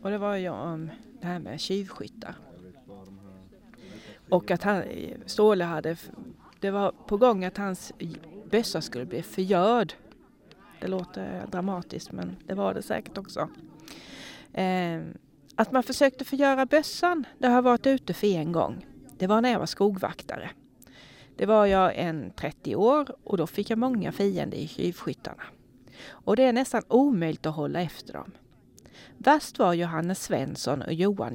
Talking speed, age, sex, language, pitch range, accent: 155 wpm, 30-49, female, Swedish, 160-230 Hz, native